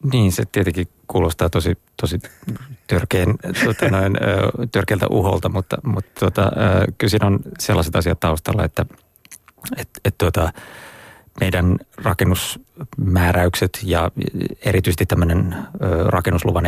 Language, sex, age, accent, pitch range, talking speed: Finnish, male, 30-49, native, 85-105 Hz, 95 wpm